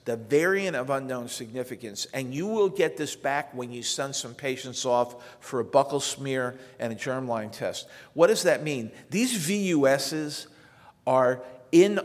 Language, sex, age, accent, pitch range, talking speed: English, male, 50-69, American, 125-150 Hz, 165 wpm